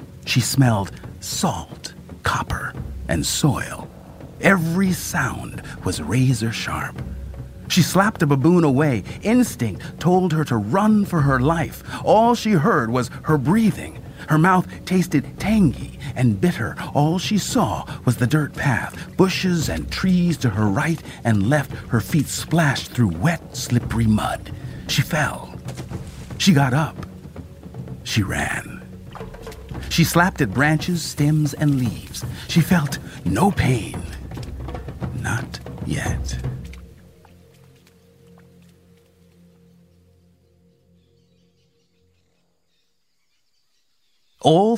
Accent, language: American, English